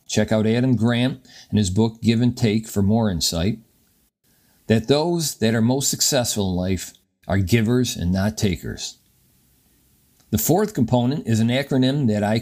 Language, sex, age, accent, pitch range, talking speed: English, male, 50-69, American, 110-135 Hz, 165 wpm